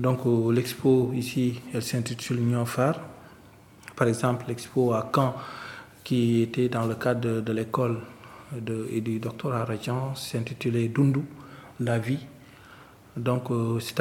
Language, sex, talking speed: French, male, 130 wpm